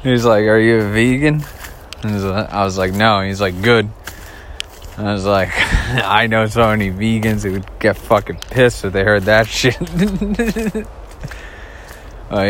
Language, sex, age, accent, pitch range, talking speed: English, male, 20-39, American, 80-100 Hz, 155 wpm